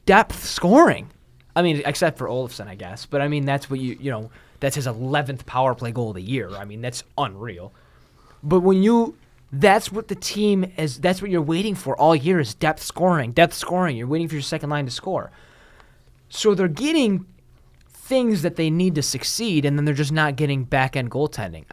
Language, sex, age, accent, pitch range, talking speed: English, male, 20-39, American, 120-160 Hz, 210 wpm